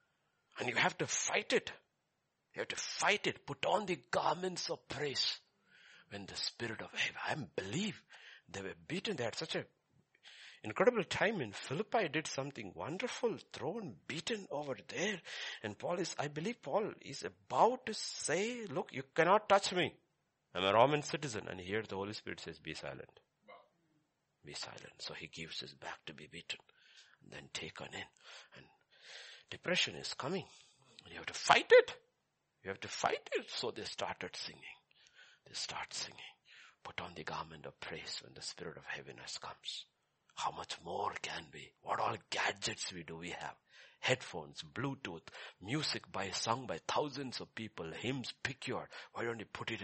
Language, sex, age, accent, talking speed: English, male, 60-79, Indian, 175 wpm